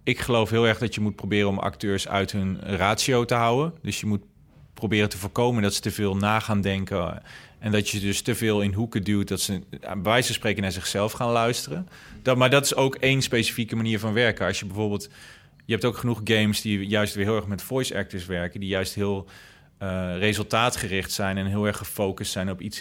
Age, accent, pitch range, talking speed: 30-49, Dutch, 100-120 Hz, 230 wpm